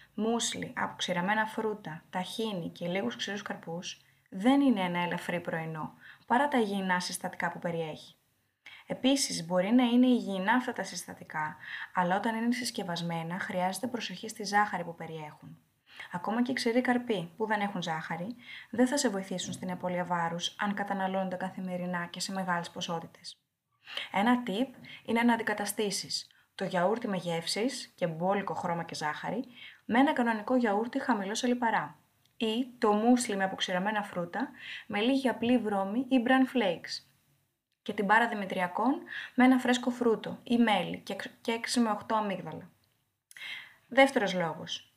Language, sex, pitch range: Greek, female, 180-240 Hz